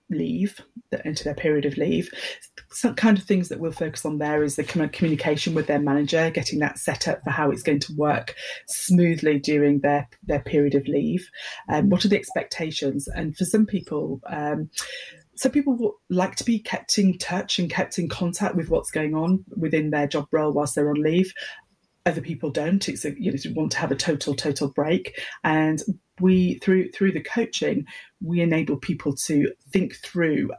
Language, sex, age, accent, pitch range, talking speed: English, female, 30-49, British, 145-185 Hz, 190 wpm